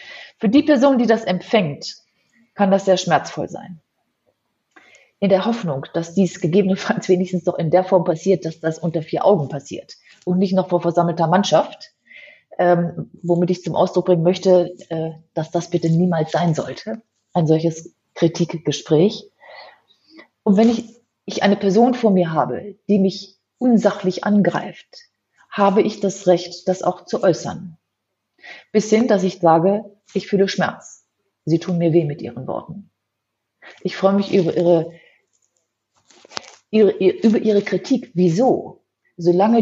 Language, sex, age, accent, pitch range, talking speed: German, female, 30-49, German, 170-200 Hz, 150 wpm